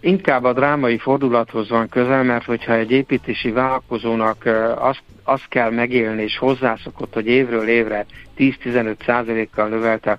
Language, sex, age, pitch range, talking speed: Hungarian, male, 60-79, 110-120 Hz, 135 wpm